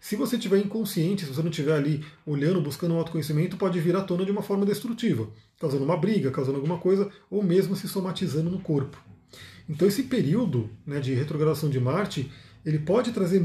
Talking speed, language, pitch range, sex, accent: 195 wpm, Portuguese, 145-190 Hz, male, Brazilian